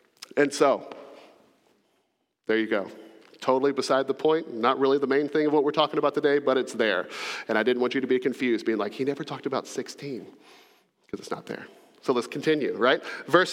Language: English